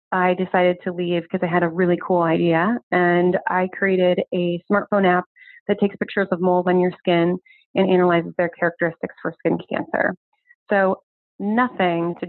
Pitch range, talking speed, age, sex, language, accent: 175-190 Hz, 170 wpm, 30-49, female, English, American